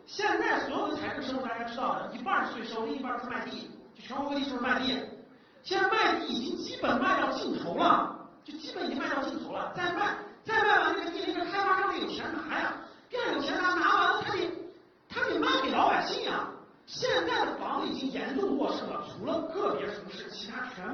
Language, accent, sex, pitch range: Chinese, native, male, 275-370 Hz